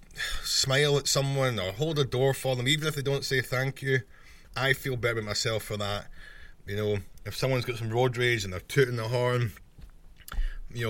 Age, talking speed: 20-39, 205 wpm